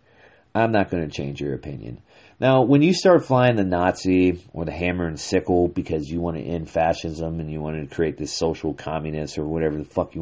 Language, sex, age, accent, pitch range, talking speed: English, male, 40-59, American, 80-110 Hz, 225 wpm